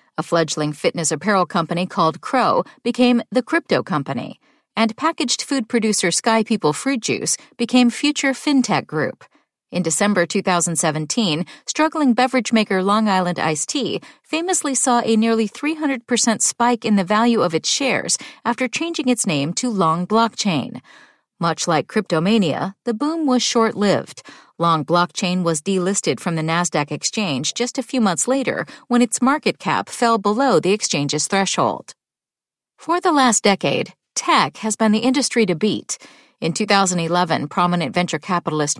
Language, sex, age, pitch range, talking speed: English, female, 40-59, 175-250 Hz, 150 wpm